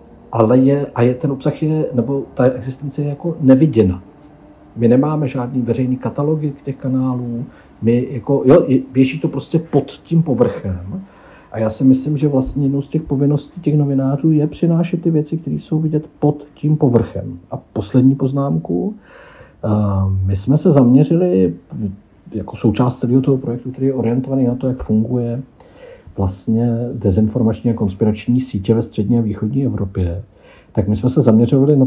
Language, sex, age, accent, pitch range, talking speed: Czech, male, 50-69, native, 110-140 Hz, 165 wpm